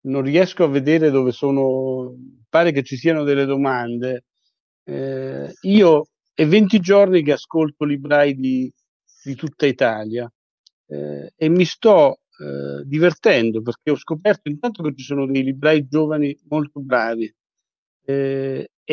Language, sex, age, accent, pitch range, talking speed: Italian, male, 50-69, native, 135-180 Hz, 135 wpm